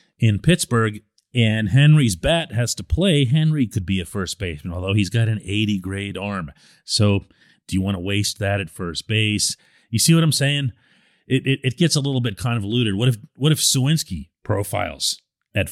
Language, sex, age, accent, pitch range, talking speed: English, male, 40-59, American, 100-135 Hz, 200 wpm